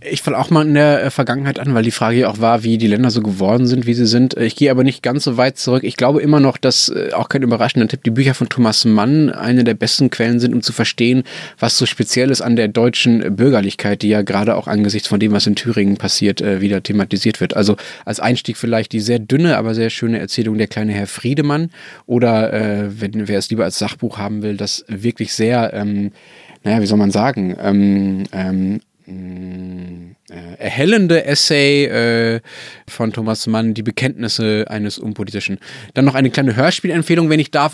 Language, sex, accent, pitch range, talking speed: German, male, German, 105-130 Hz, 205 wpm